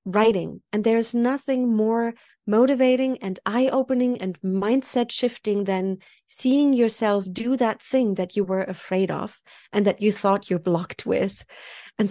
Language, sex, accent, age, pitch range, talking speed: English, female, German, 30-49, 190-235 Hz, 150 wpm